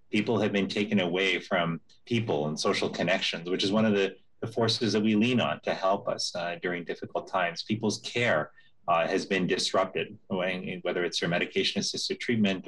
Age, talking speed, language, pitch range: 30-49, 185 wpm, English, 95-120 Hz